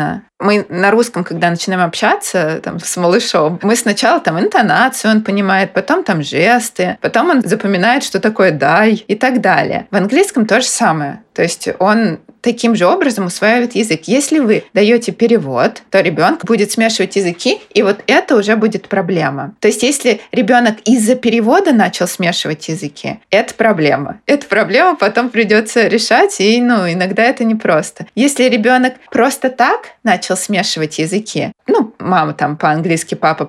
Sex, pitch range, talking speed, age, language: female, 180-235 Hz, 150 wpm, 20-39, Russian